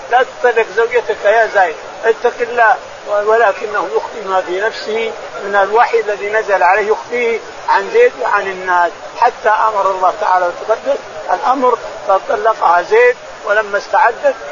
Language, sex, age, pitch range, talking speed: Arabic, male, 50-69, 205-250 Hz, 130 wpm